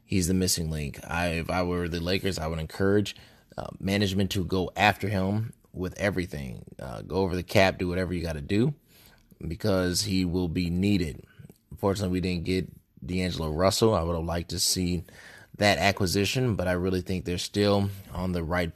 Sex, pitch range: male, 85-100 Hz